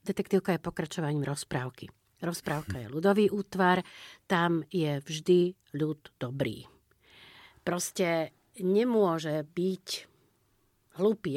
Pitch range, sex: 150-185 Hz, female